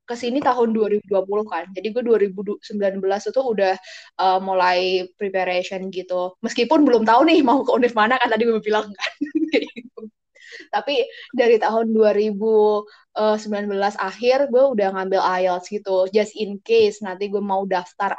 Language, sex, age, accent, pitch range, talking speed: Indonesian, female, 20-39, native, 195-235 Hz, 145 wpm